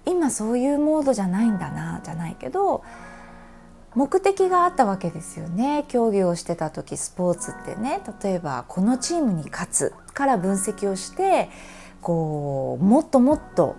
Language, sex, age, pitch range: Japanese, female, 20-39, 170-280 Hz